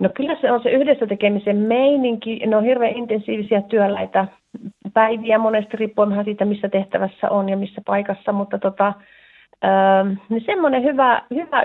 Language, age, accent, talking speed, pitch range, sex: Finnish, 40-59, native, 145 wpm, 195-235 Hz, female